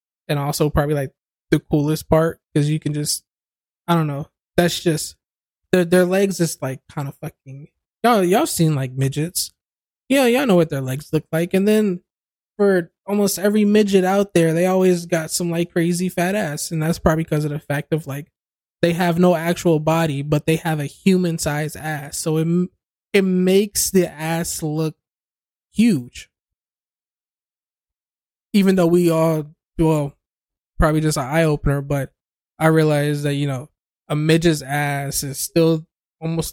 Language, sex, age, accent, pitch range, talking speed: English, male, 20-39, American, 150-175 Hz, 165 wpm